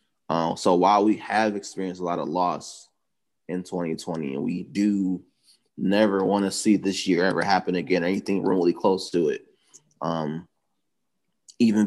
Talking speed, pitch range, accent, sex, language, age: 155 wpm, 90-110 Hz, American, male, English, 20-39